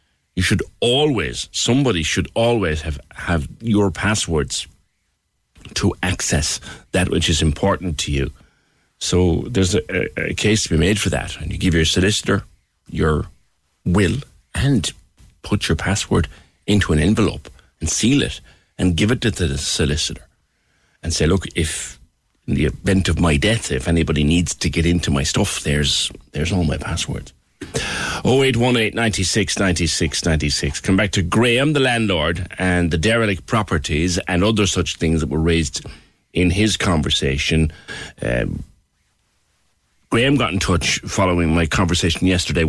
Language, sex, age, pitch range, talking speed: English, male, 60-79, 80-100 Hz, 150 wpm